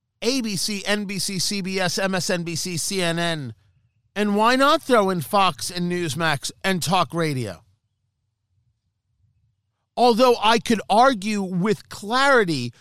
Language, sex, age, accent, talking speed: English, male, 40-59, American, 105 wpm